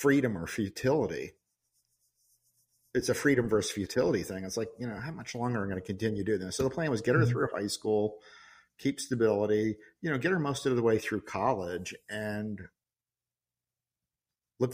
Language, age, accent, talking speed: English, 50-69, American, 185 wpm